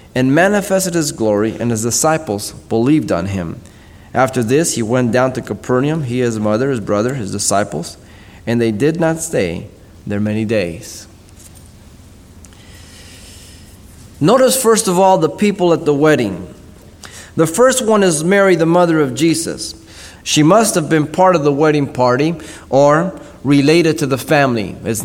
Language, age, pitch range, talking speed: English, 30-49, 110-160 Hz, 155 wpm